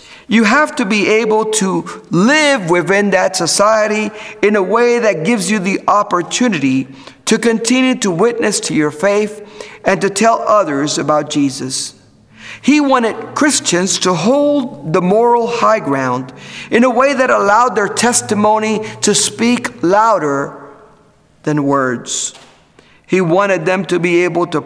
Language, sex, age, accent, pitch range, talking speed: English, male, 50-69, American, 145-215 Hz, 145 wpm